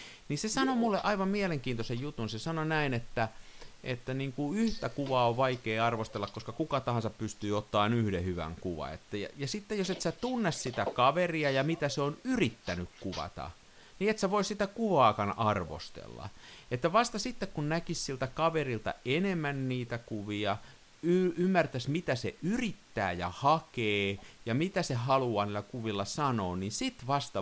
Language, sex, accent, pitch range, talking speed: Finnish, male, native, 105-155 Hz, 170 wpm